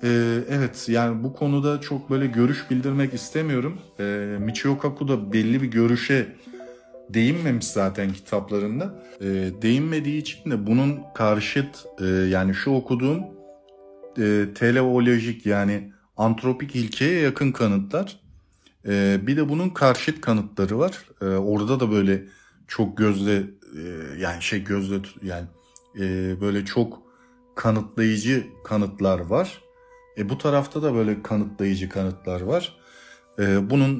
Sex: male